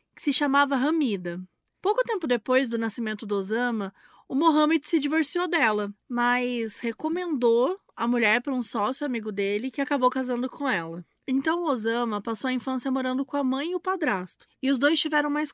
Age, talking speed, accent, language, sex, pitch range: 20-39, 180 wpm, Brazilian, Portuguese, female, 235-295 Hz